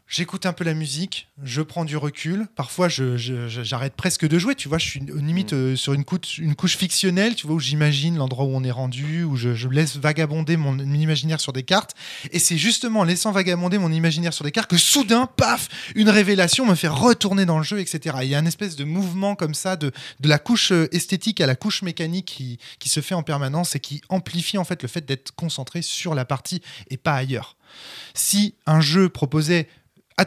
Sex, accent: male, French